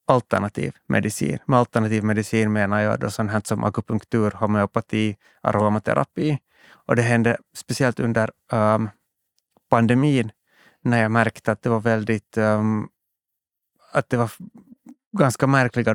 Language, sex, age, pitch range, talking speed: Swedish, male, 30-49, 110-125 Hz, 125 wpm